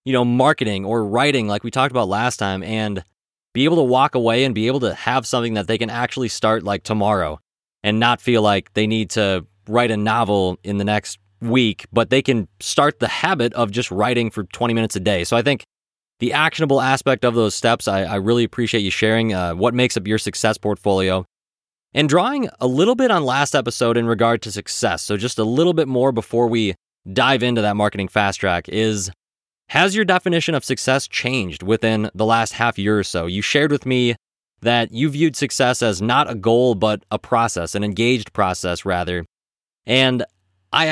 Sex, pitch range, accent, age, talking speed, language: male, 105-130 Hz, American, 20-39, 205 wpm, English